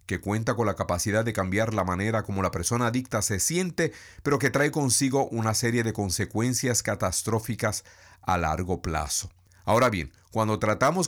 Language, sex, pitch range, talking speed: Spanish, male, 95-130 Hz, 170 wpm